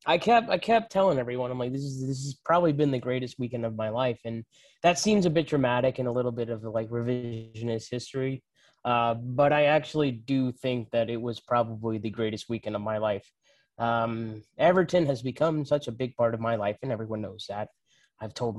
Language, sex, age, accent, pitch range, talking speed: English, male, 20-39, American, 115-140 Hz, 215 wpm